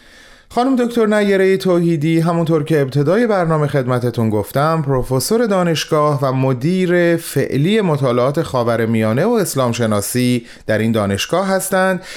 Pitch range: 115-175 Hz